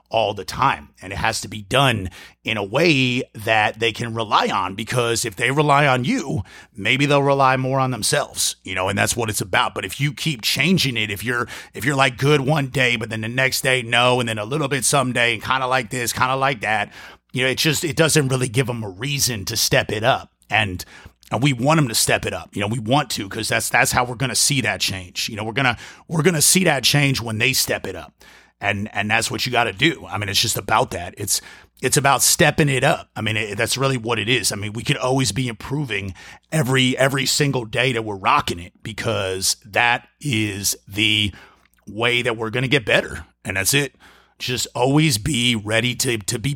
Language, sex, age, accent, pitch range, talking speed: English, male, 30-49, American, 110-140 Hz, 245 wpm